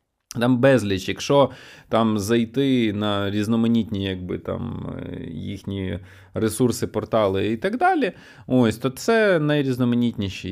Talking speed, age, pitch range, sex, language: 110 wpm, 20-39, 100-135 Hz, male, Ukrainian